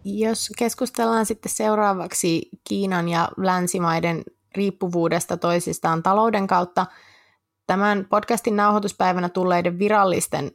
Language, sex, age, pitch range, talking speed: Finnish, female, 20-39, 155-195 Hz, 90 wpm